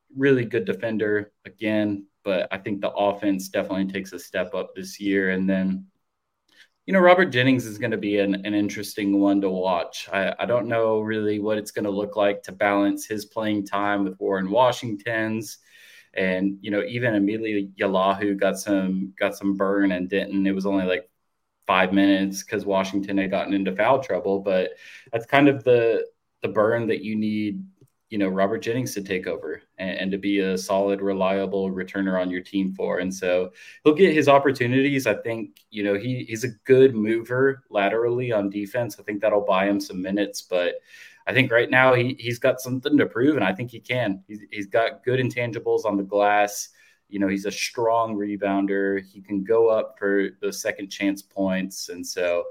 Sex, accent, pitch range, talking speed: male, American, 100-115 Hz, 200 wpm